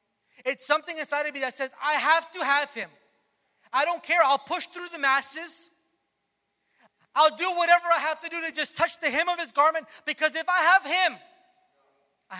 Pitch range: 180-250 Hz